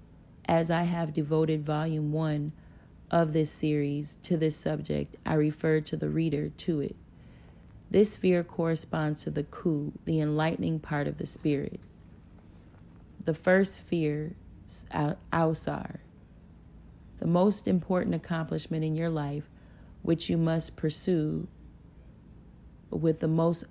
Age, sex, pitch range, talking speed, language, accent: 30-49, female, 150-165 Hz, 120 wpm, English, American